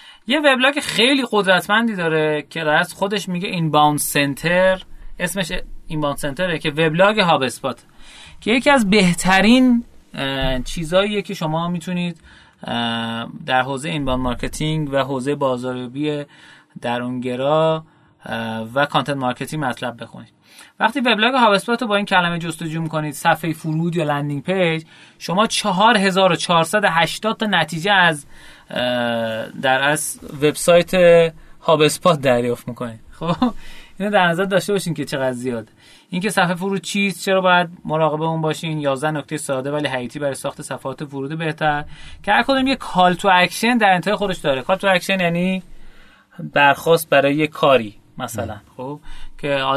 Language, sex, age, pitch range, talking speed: Persian, male, 30-49, 140-185 Hz, 135 wpm